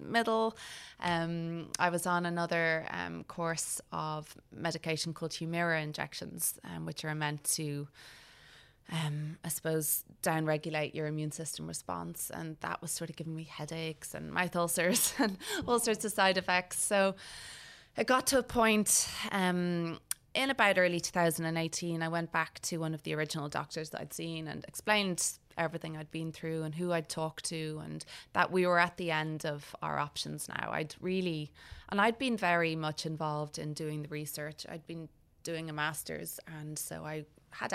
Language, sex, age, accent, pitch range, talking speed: English, female, 20-39, Irish, 155-175 Hz, 175 wpm